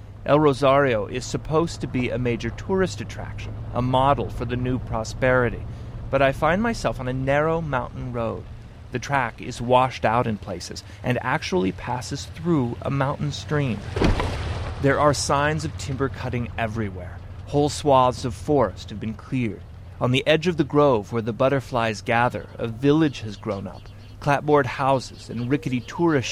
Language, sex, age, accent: English, male, 30-49, American